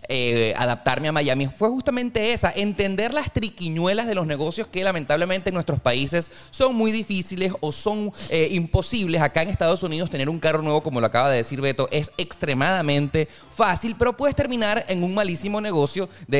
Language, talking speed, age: Spanish, 185 wpm, 30-49